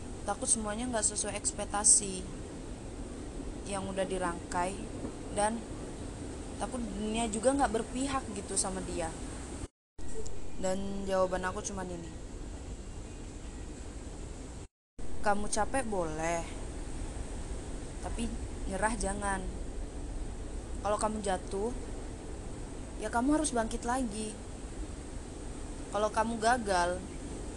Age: 20-39